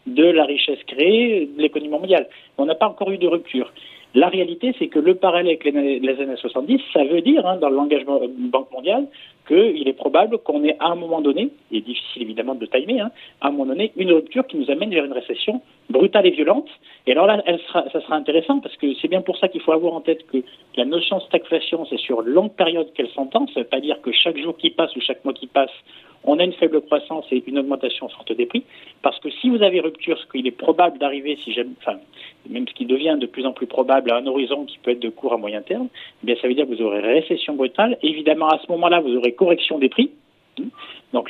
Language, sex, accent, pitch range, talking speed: French, male, French, 140-210 Hz, 255 wpm